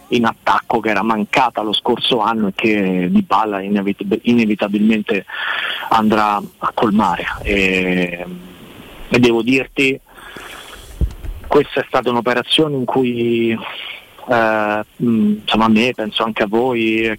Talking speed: 115 wpm